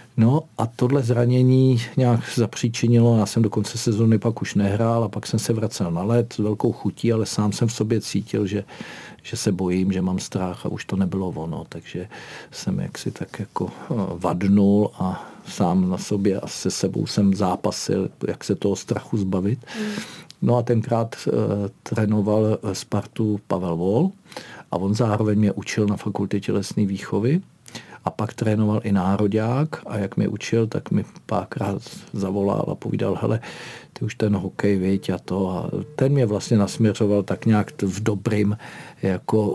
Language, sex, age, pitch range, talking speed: Czech, male, 50-69, 95-115 Hz, 165 wpm